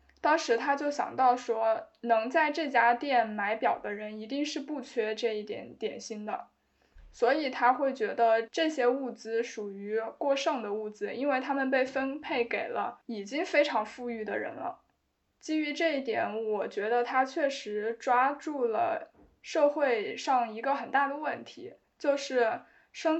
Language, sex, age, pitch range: Chinese, female, 20-39, 230-280 Hz